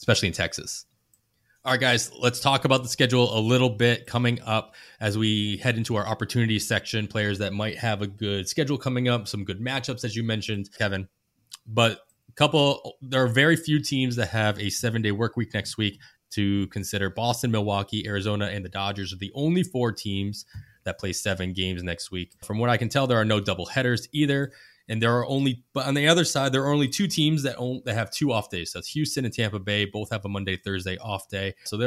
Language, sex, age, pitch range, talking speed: English, male, 20-39, 95-125 Hz, 230 wpm